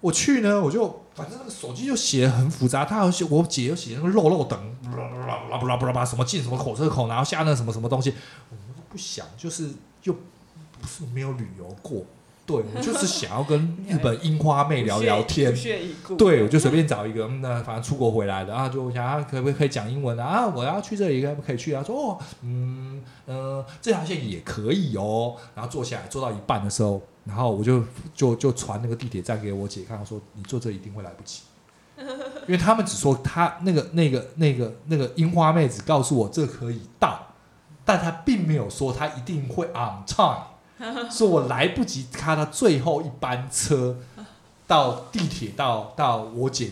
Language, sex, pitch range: Chinese, male, 120-165 Hz